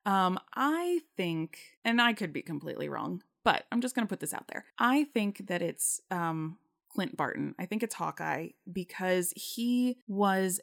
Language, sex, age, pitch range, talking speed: English, female, 20-39, 165-200 Hz, 180 wpm